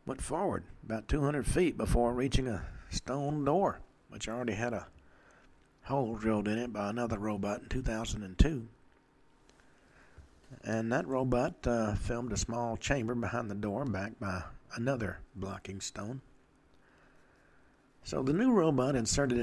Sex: male